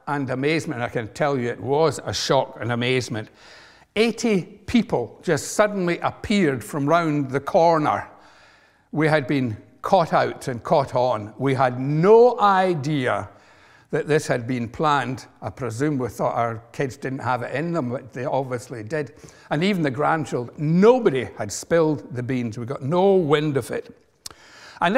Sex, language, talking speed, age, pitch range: male, English, 165 wpm, 60-79, 130-185 Hz